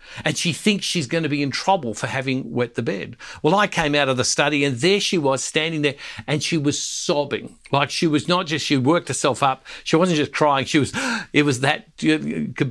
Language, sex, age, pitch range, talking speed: English, male, 60-79, 125-155 Hz, 240 wpm